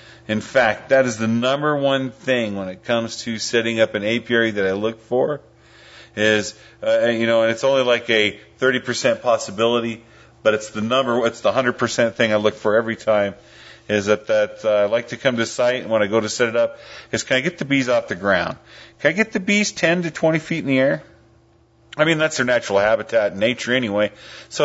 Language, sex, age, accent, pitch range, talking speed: English, male, 40-59, American, 110-130 Hz, 230 wpm